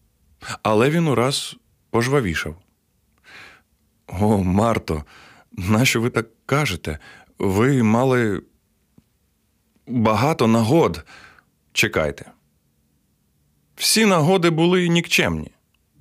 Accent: native